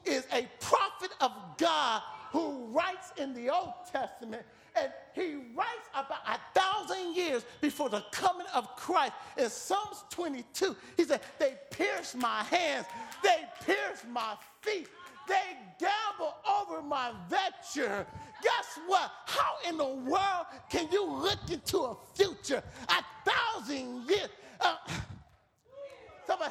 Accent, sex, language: American, male, English